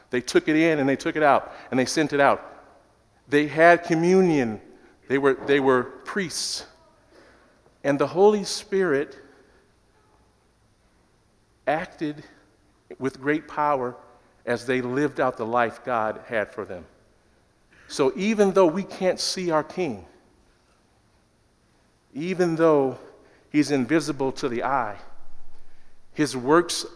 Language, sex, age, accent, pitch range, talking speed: English, male, 50-69, American, 130-155 Hz, 125 wpm